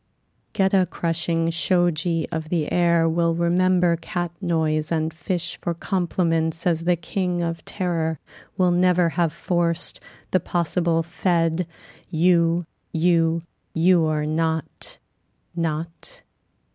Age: 30-49